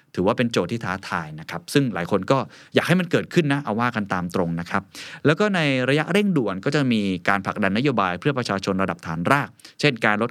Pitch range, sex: 100-140 Hz, male